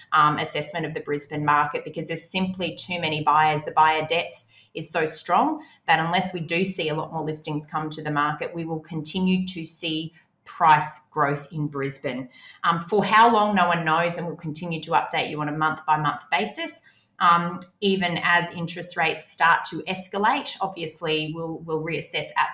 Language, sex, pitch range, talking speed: English, female, 155-180 Hz, 185 wpm